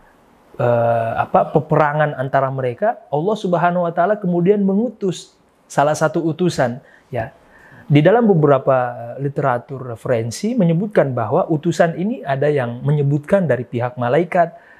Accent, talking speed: native, 120 wpm